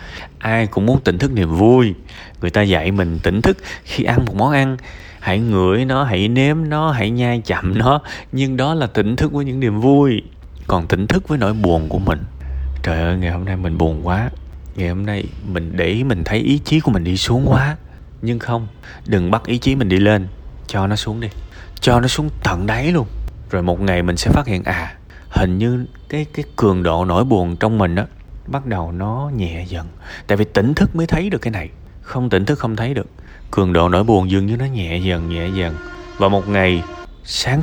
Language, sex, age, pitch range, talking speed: Vietnamese, male, 20-39, 85-120 Hz, 225 wpm